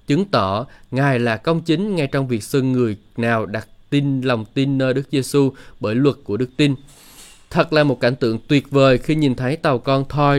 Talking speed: 215 wpm